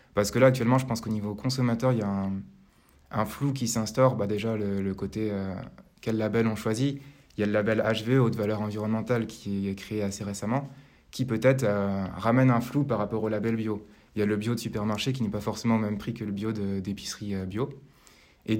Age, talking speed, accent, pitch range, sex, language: 20-39, 240 wpm, French, 100-120 Hz, male, French